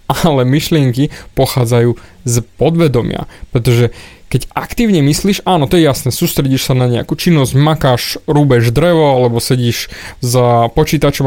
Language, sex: Slovak, male